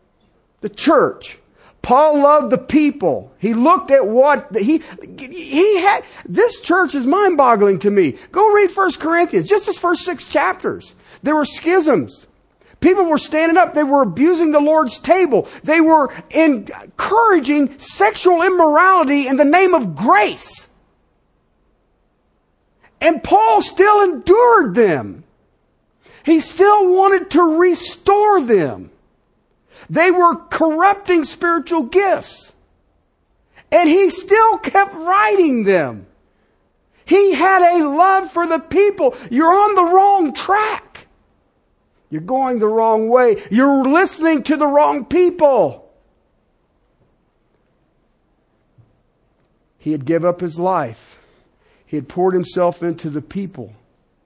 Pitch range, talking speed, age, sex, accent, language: 255-370 Hz, 120 wpm, 50-69, male, American, English